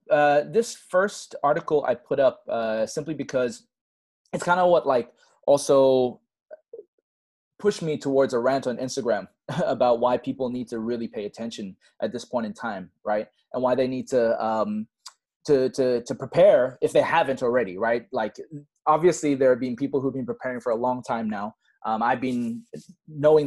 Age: 20-39